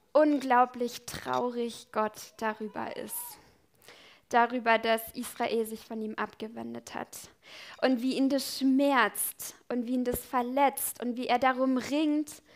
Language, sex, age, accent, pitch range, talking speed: German, female, 10-29, German, 225-270 Hz, 135 wpm